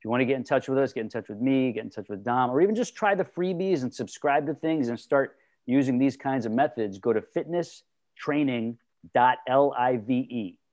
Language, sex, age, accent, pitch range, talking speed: English, male, 40-59, American, 120-150 Hz, 220 wpm